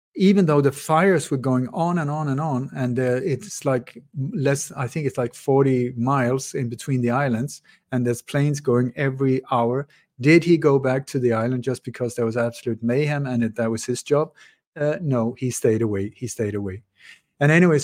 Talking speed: 205 wpm